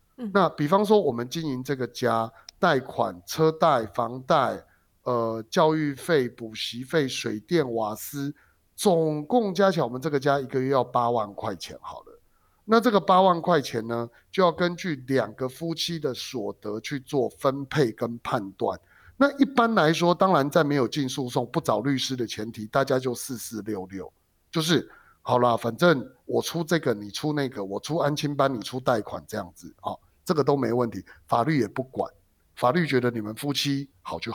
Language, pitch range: Chinese, 120-170 Hz